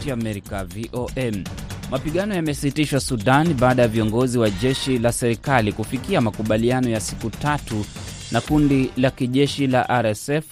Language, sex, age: Swahili, male, 30-49